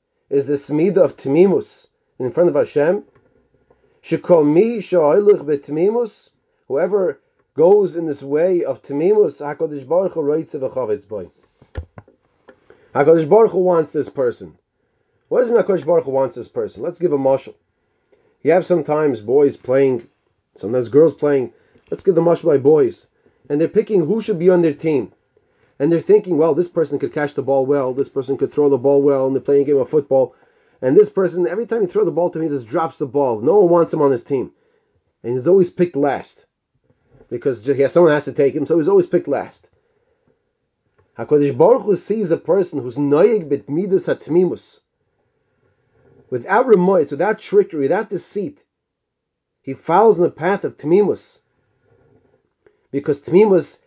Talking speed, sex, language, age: 175 wpm, male, English, 30-49